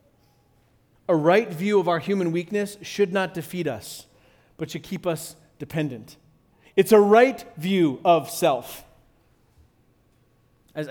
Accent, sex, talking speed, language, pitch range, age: American, male, 125 wpm, English, 150-200 Hz, 30-49